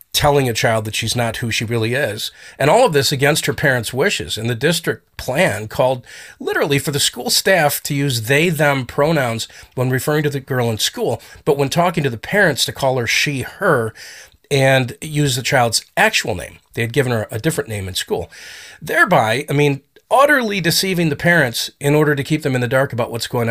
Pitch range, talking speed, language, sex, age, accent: 110-145 Hz, 215 wpm, English, male, 40-59, American